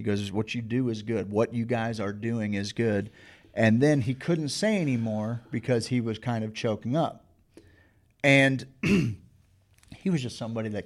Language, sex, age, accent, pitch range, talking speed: English, male, 40-59, American, 105-130 Hz, 180 wpm